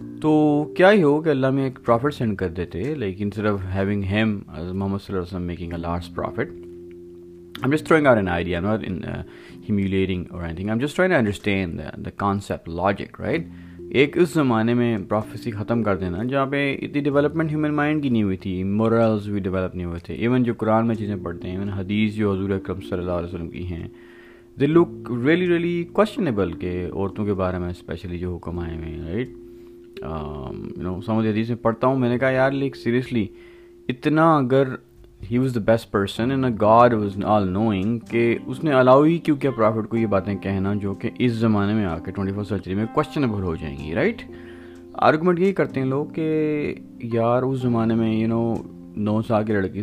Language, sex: Urdu, male